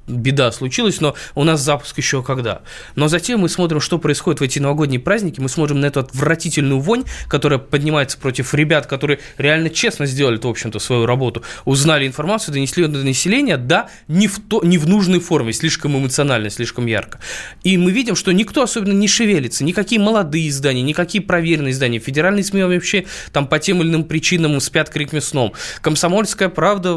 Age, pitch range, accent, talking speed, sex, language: 20-39, 125-165 Hz, native, 180 wpm, male, Russian